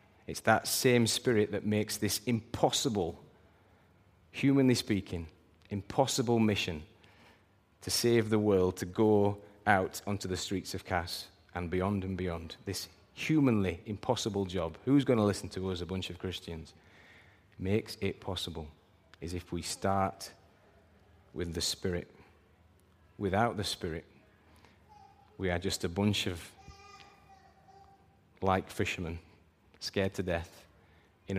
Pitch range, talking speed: 90-105 Hz, 130 wpm